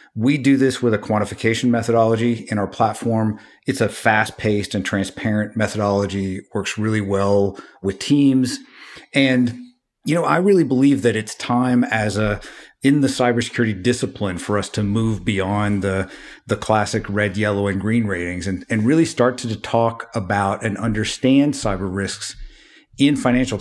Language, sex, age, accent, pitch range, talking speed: English, male, 50-69, American, 105-125 Hz, 160 wpm